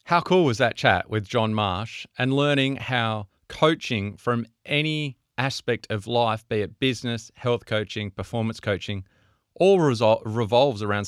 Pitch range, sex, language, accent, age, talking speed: 100-125 Hz, male, English, Australian, 30-49, 145 wpm